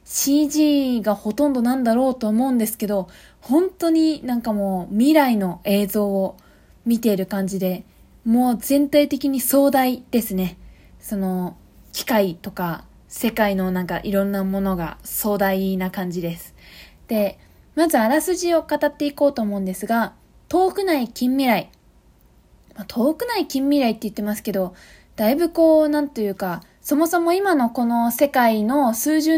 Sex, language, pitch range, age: female, Japanese, 210-290 Hz, 20-39